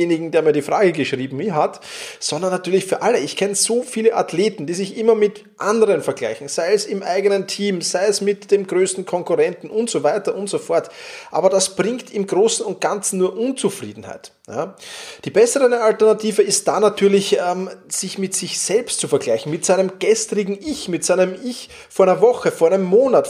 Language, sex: German, male